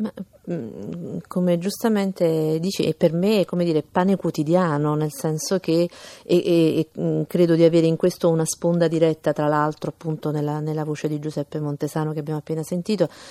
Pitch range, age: 155-180 Hz, 40-59